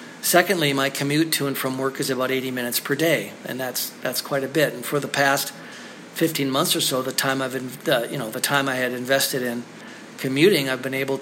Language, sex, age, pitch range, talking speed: English, male, 50-69, 125-145 Hz, 225 wpm